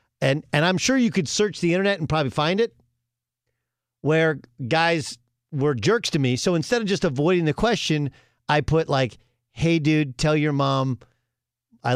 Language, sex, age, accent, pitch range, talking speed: English, male, 50-69, American, 120-160 Hz, 175 wpm